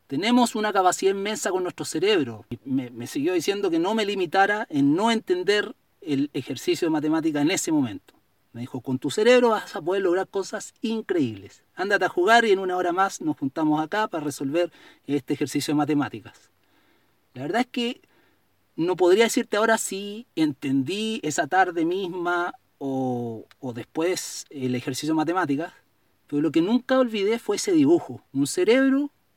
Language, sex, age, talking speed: Spanish, male, 40-59, 170 wpm